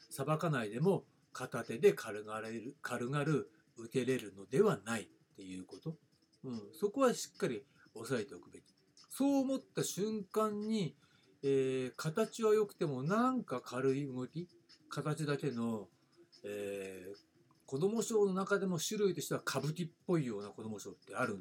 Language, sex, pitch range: Japanese, male, 130-200 Hz